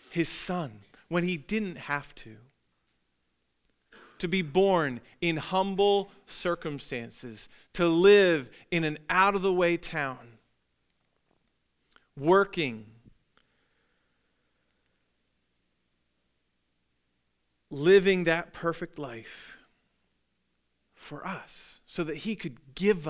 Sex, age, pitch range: male, 40-59, 115-175 Hz